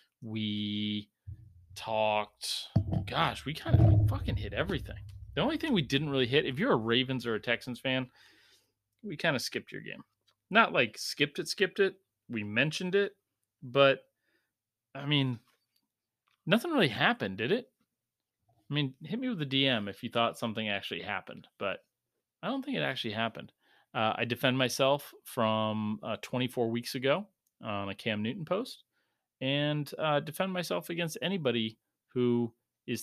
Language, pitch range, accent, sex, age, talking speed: English, 110-135 Hz, American, male, 30-49, 160 wpm